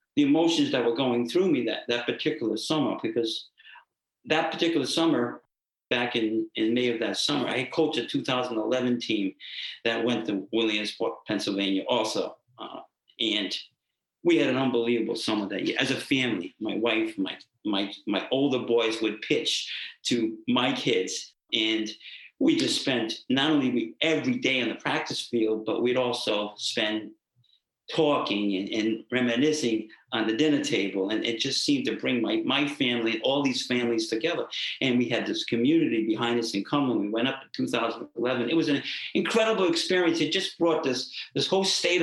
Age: 50-69